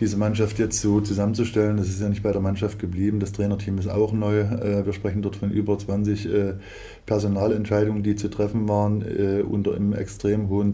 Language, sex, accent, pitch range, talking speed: German, male, German, 100-105 Hz, 185 wpm